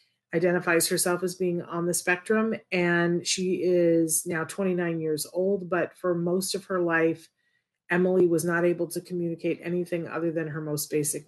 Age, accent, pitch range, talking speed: 40-59, American, 160-185 Hz, 170 wpm